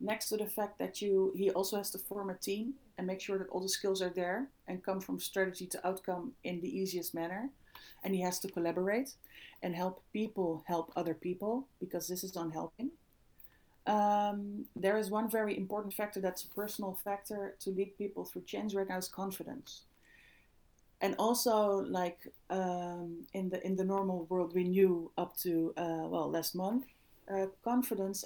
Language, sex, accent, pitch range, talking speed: English, female, Dutch, 170-195 Hz, 185 wpm